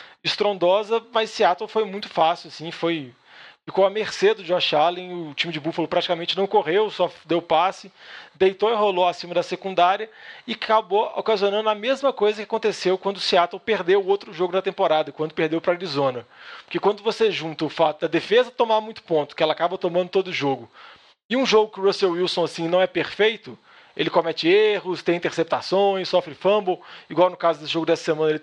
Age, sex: 20-39, male